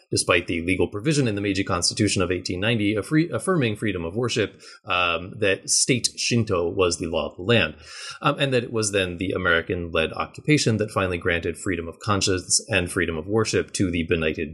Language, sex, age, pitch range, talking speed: English, male, 30-49, 90-120 Hz, 200 wpm